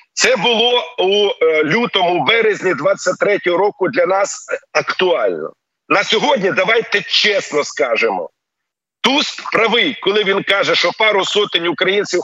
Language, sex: Ukrainian, male